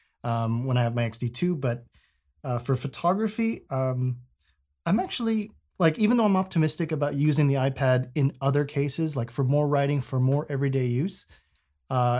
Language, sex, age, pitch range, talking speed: English, male, 30-49, 125-150 Hz, 165 wpm